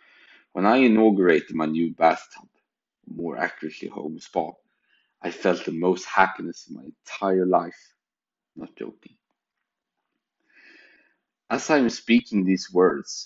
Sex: male